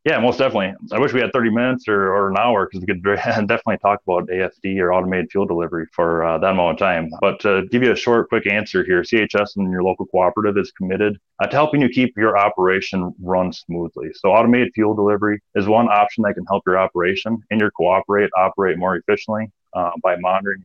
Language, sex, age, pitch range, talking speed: English, male, 30-49, 90-110 Hz, 225 wpm